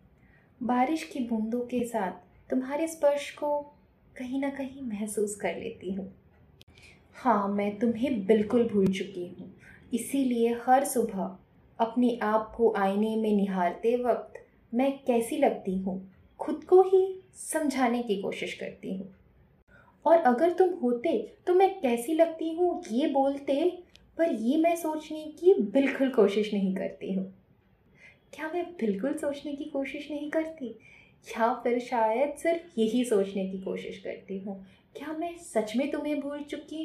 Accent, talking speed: native, 145 wpm